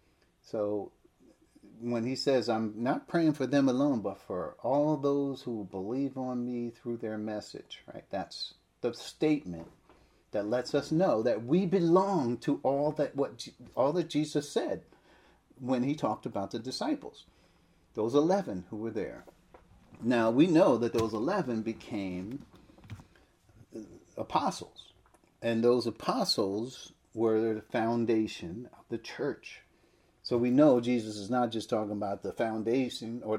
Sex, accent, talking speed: male, American, 145 wpm